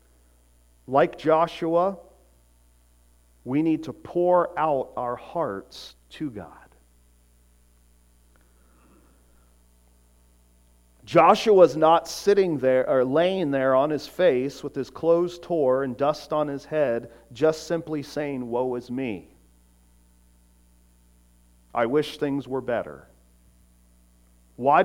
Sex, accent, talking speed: male, American, 100 wpm